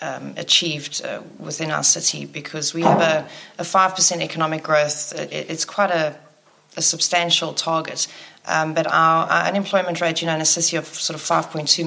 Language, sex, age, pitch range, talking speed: English, female, 30-49, 150-165 Hz, 190 wpm